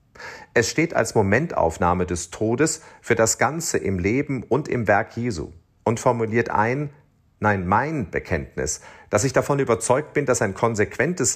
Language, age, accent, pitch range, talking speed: German, 40-59, German, 100-130 Hz, 155 wpm